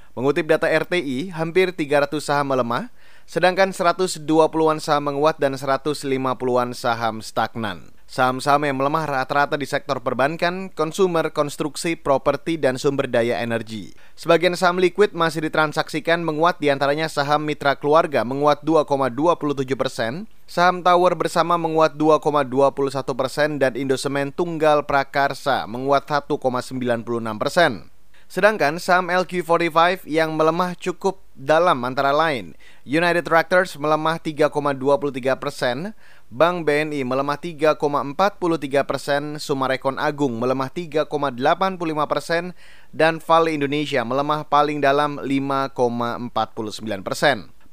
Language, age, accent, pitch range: Indonesian, 30-49, native, 140-170 Hz